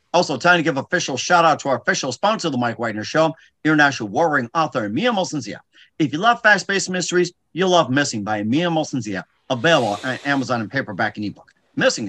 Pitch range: 125-160 Hz